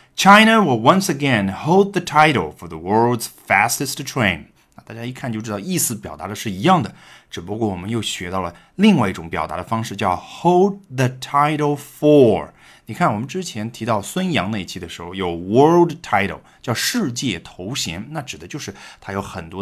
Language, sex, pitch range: Chinese, male, 95-145 Hz